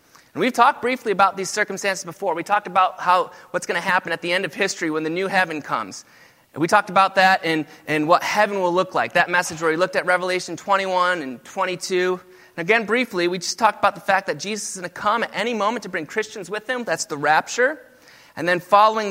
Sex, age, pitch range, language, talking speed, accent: male, 30-49, 180-215 Hz, English, 235 wpm, American